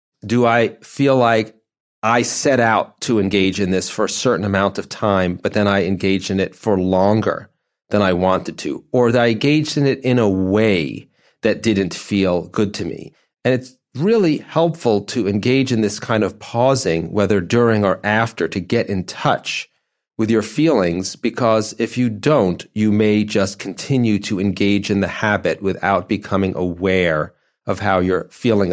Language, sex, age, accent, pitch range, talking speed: English, male, 40-59, American, 100-120 Hz, 180 wpm